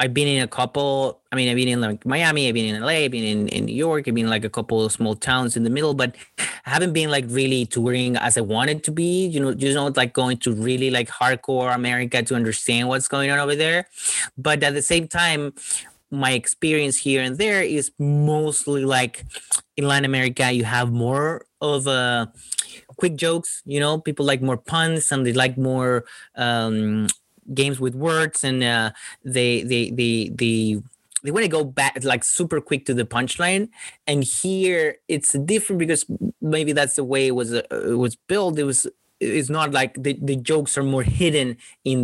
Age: 30-49